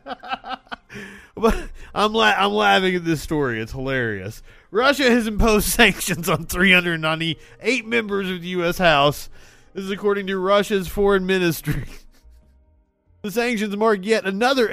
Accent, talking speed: American, 125 wpm